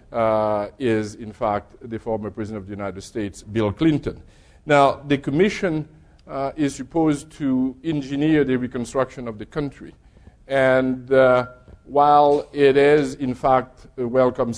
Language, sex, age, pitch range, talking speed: English, male, 50-69, 115-140 Hz, 145 wpm